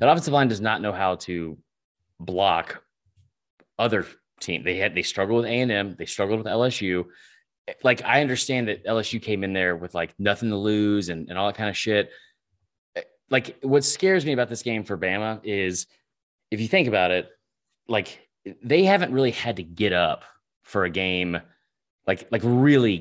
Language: English